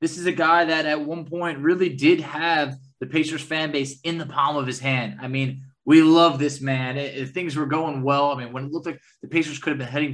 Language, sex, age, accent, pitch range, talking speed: English, male, 20-39, American, 130-155 Hz, 260 wpm